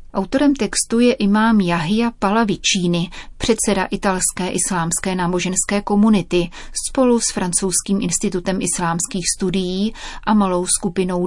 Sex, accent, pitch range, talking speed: female, native, 180-215 Hz, 105 wpm